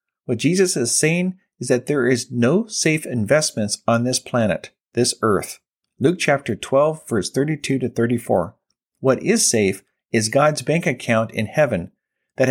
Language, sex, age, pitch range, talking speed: English, male, 40-59, 120-175 Hz, 160 wpm